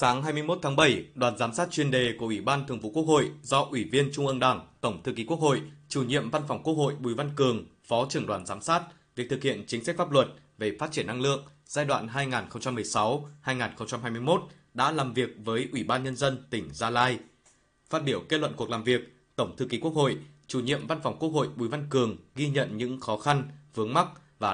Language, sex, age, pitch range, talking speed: Vietnamese, male, 20-39, 115-145 Hz, 235 wpm